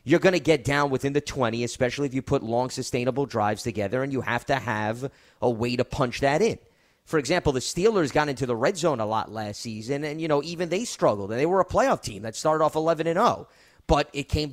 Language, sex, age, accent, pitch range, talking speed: English, male, 30-49, American, 120-155 Hz, 250 wpm